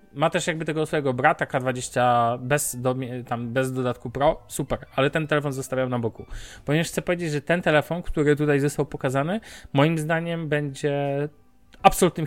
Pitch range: 130-155 Hz